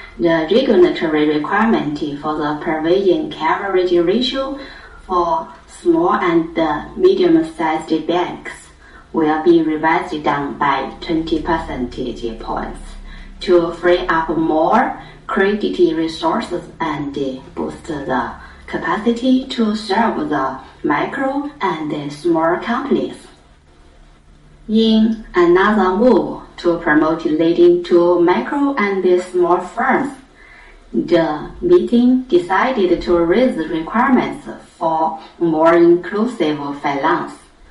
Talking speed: 95 wpm